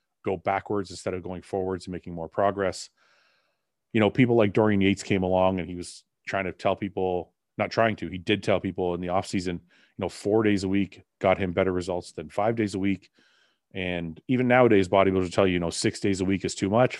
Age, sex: 30-49, male